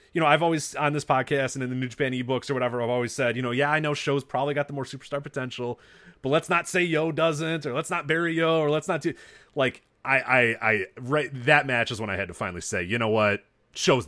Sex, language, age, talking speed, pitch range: male, English, 30-49, 270 wpm, 95-140 Hz